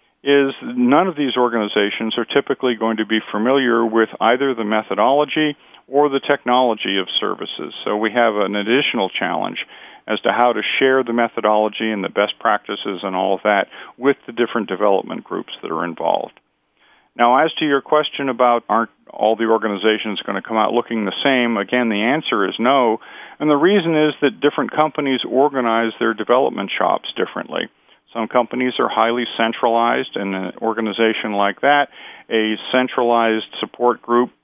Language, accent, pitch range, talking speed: English, American, 110-135 Hz, 170 wpm